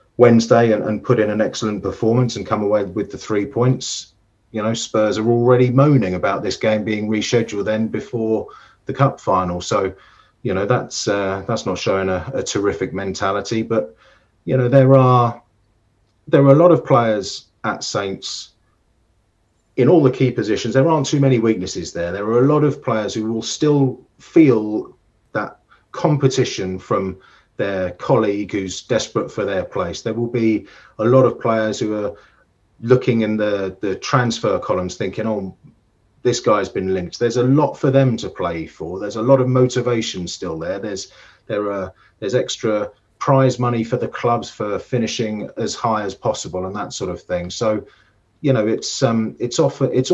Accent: British